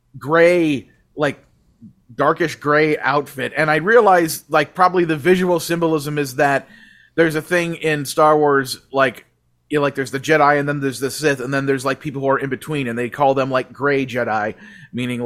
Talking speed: 195 wpm